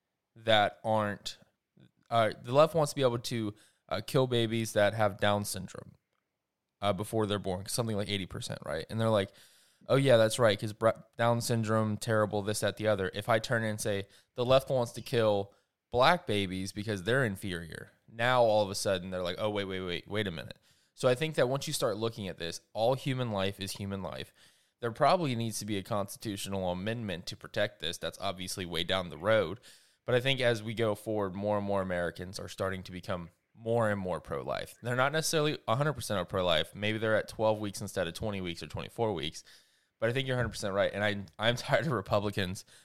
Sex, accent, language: male, American, English